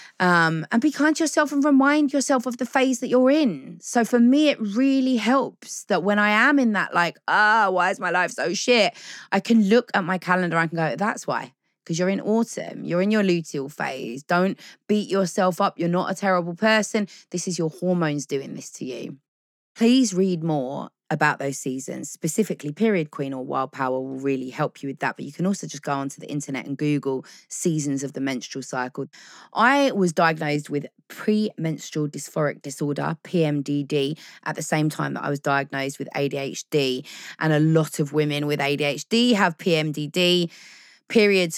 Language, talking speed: English, 195 wpm